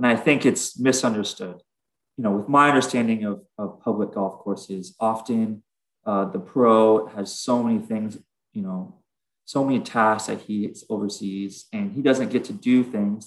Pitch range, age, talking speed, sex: 100-140 Hz, 20-39, 170 wpm, male